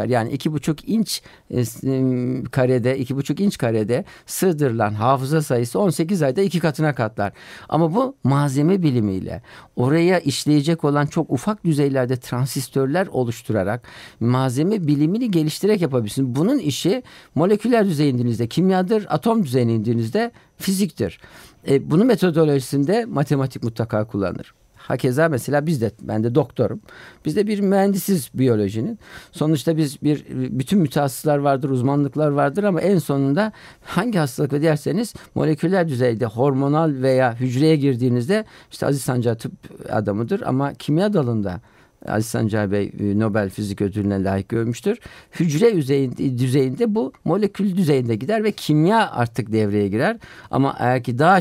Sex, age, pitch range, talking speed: male, 50-69, 120-165 Hz, 130 wpm